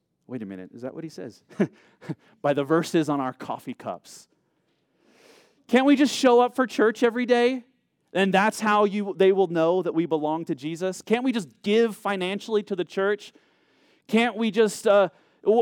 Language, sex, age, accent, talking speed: English, male, 30-49, American, 185 wpm